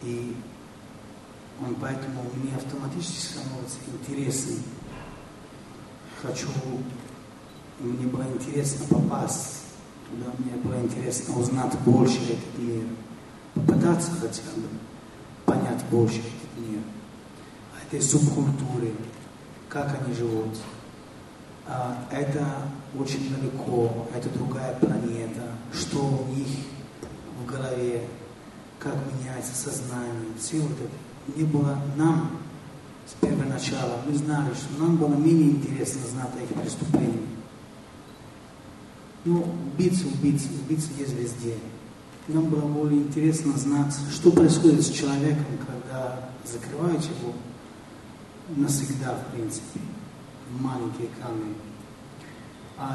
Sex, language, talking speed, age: male, Russian, 100 wpm, 40-59